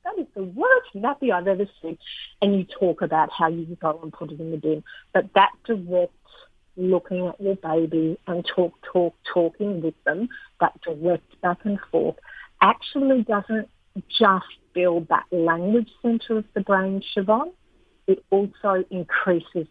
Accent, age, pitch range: Australian, 50-69, 170-205 Hz